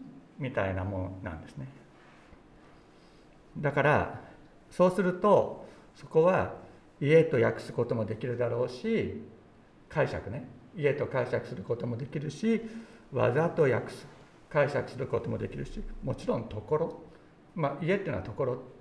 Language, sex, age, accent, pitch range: Japanese, male, 60-79, native, 115-180 Hz